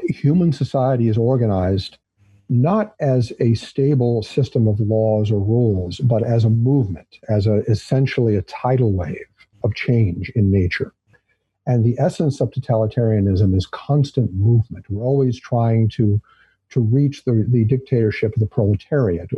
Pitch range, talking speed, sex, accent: 105-135 Hz, 145 wpm, male, American